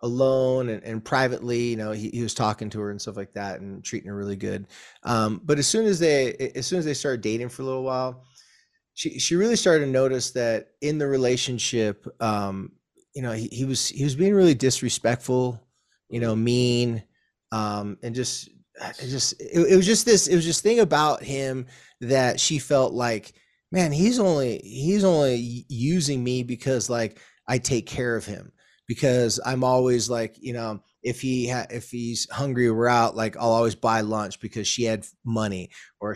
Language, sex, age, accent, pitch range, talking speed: English, male, 30-49, American, 115-140 Hz, 195 wpm